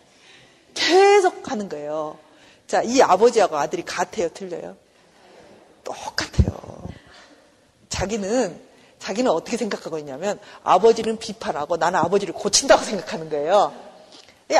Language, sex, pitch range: Korean, female, 185-275 Hz